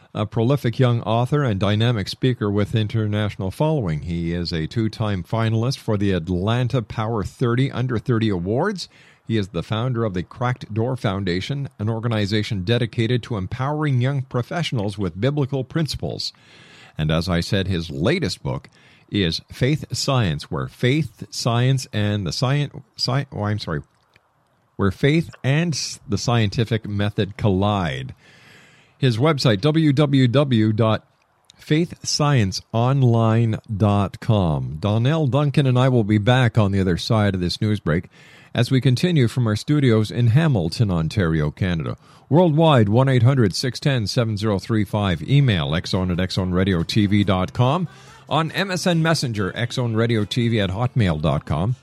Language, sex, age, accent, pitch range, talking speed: English, male, 50-69, American, 105-135 Hz, 125 wpm